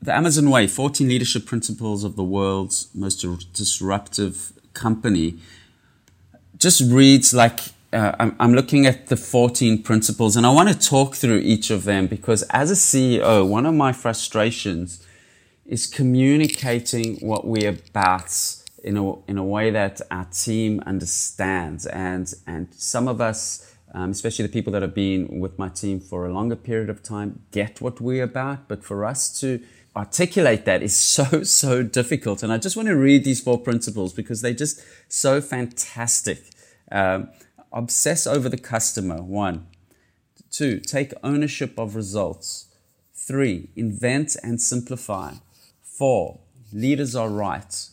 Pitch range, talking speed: 95-125 Hz, 155 wpm